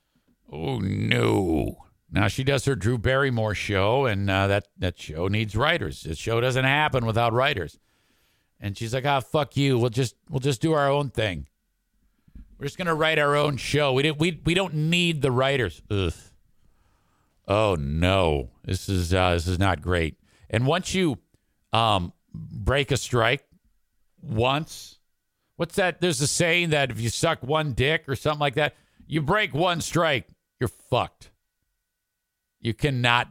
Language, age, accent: English, 50-69, American